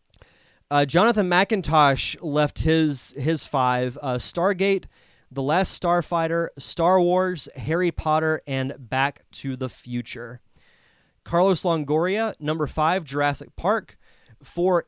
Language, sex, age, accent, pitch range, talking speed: English, male, 30-49, American, 135-180 Hz, 115 wpm